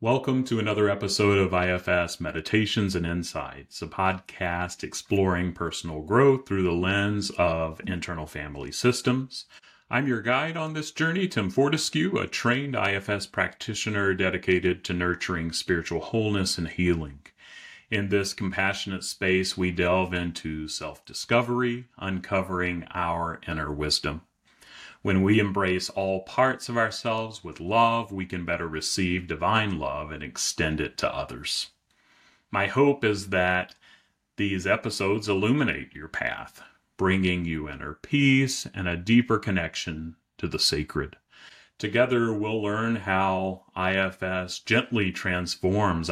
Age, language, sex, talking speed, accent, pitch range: 30-49, English, male, 130 wpm, American, 85-110 Hz